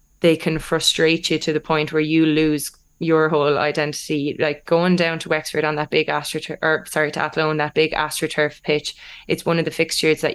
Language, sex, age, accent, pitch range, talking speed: English, female, 20-39, Irish, 150-160 Hz, 210 wpm